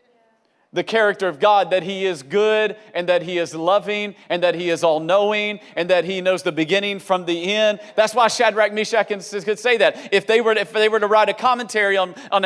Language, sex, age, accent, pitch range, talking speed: English, male, 40-59, American, 205-260 Hz, 230 wpm